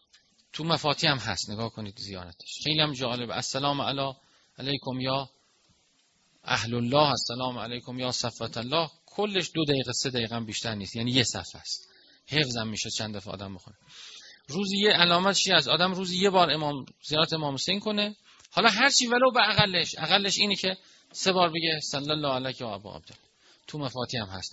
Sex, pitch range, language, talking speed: male, 120-180 Hz, Persian, 180 wpm